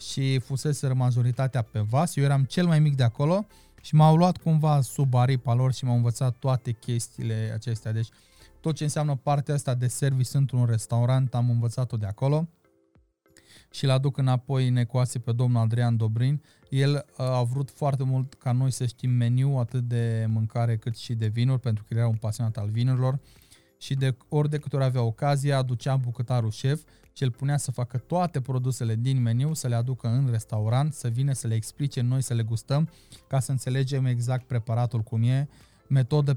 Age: 20-39